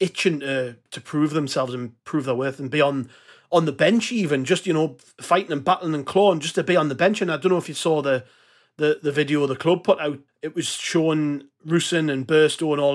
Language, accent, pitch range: English, British, 140-175 Hz